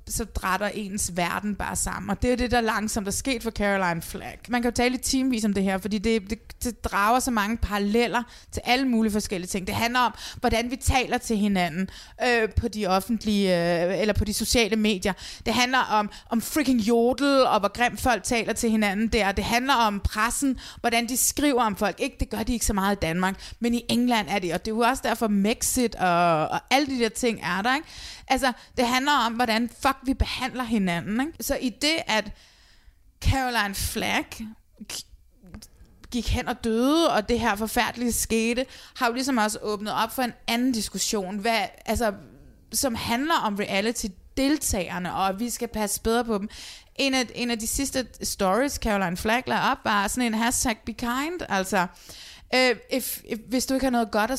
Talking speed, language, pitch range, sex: 205 wpm, Danish, 205-250 Hz, female